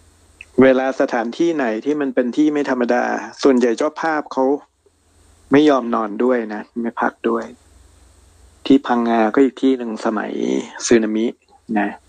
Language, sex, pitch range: Thai, male, 105-125 Hz